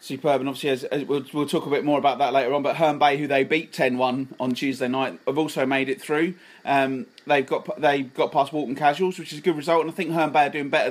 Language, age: English, 30-49